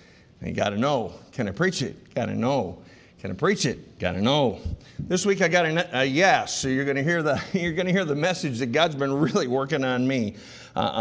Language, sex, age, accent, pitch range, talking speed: English, male, 50-69, American, 120-170 Hz, 220 wpm